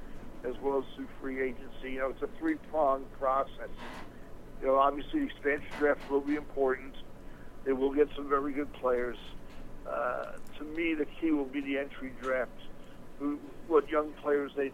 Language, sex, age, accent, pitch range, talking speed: English, male, 60-79, American, 130-145 Hz, 175 wpm